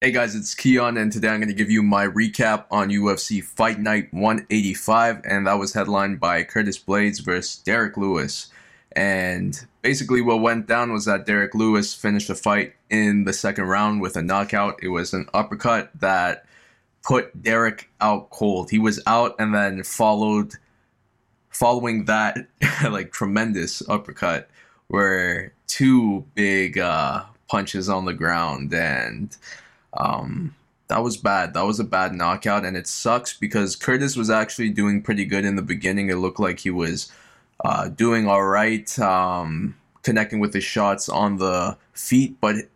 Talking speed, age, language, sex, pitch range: 165 wpm, 20-39, English, male, 95-110 Hz